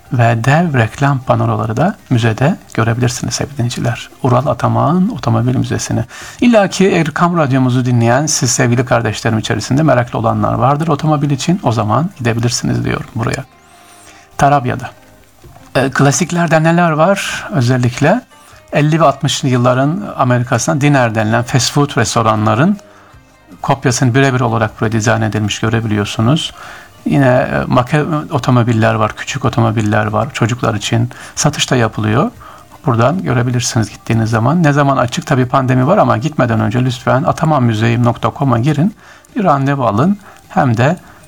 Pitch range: 115-155 Hz